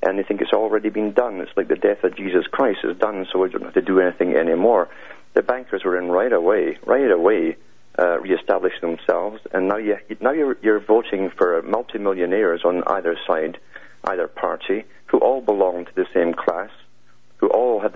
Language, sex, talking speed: English, male, 200 wpm